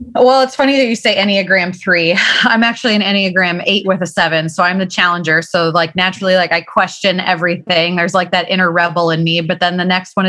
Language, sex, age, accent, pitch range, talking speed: English, female, 20-39, American, 170-200 Hz, 225 wpm